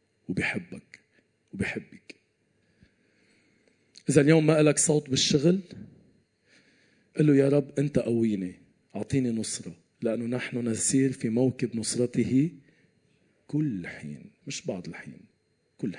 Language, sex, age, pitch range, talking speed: Arabic, male, 40-59, 110-145 Hz, 105 wpm